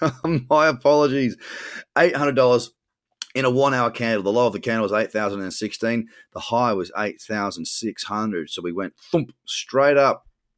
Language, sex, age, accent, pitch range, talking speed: English, male, 30-49, Australian, 105-135 Hz, 180 wpm